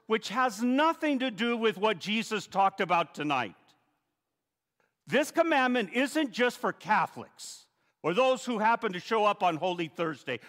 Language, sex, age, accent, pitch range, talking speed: English, male, 50-69, American, 155-230 Hz, 155 wpm